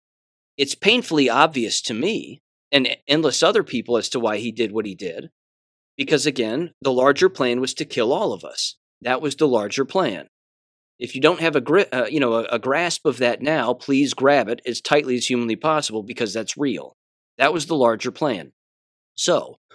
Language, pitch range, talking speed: English, 115-145 Hz, 200 wpm